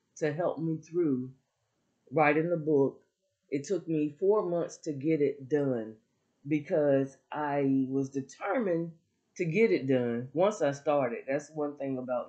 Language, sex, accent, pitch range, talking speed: English, female, American, 130-160 Hz, 150 wpm